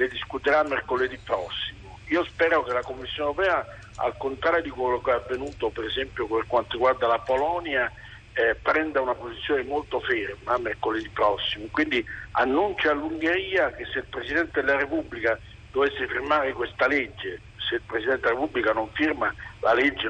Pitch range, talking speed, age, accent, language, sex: 120-155 Hz, 160 wpm, 50-69, native, Italian, male